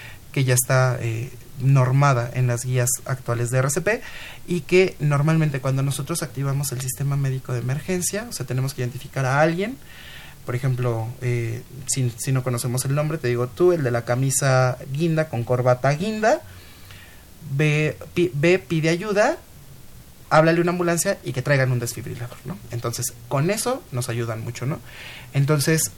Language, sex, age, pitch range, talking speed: Spanish, male, 30-49, 125-160 Hz, 160 wpm